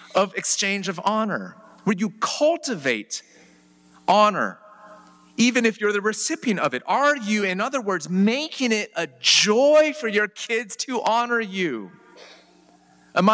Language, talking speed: English, 140 wpm